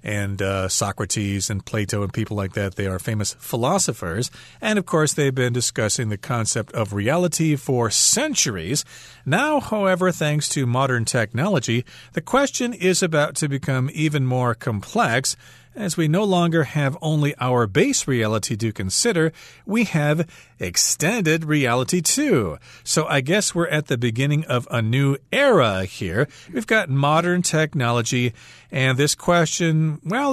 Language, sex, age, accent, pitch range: Chinese, male, 40-59, American, 120-160 Hz